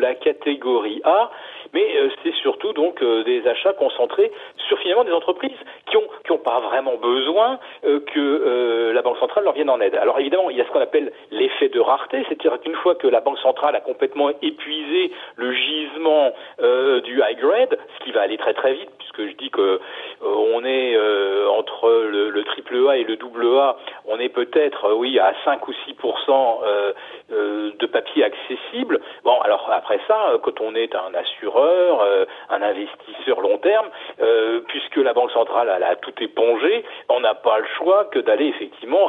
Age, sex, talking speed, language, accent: 40-59, male, 195 wpm, French, French